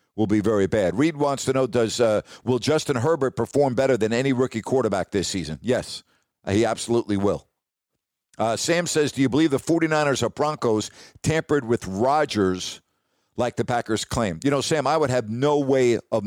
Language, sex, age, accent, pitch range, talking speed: English, male, 50-69, American, 115-150 Hz, 190 wpm